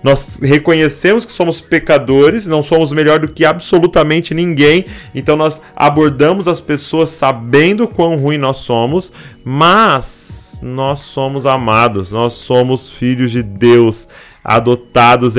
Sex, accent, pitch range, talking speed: male, Brazilian, 120-155 Hz, 125 wpm